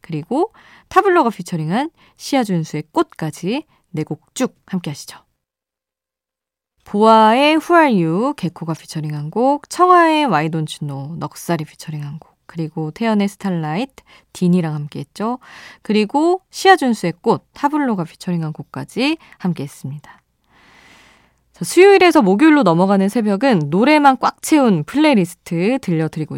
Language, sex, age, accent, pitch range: Korean, female, 20-39, native, 165-250 Hz